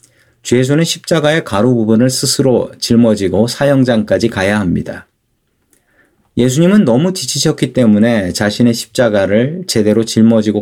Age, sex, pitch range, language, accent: 40-59, male, 110-140 Hz, Korean, native